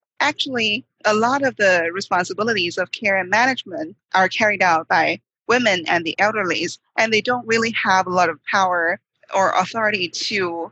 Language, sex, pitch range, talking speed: English, female, 180-225 Hz, 170 wpm